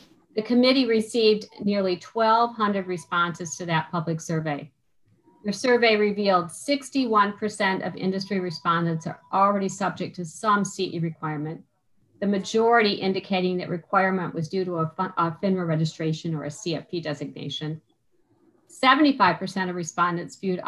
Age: 50-69